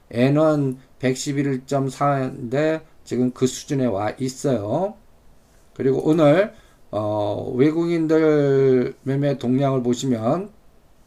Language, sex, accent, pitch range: Korean, male, native, 120-155 Hz